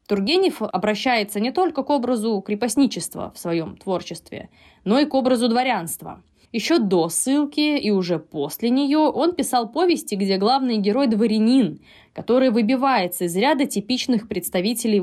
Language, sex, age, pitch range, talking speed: Russian, female, 20-39, 180-245 Hz, 140 wpm